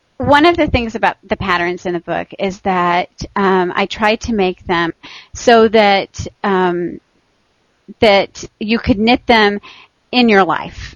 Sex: female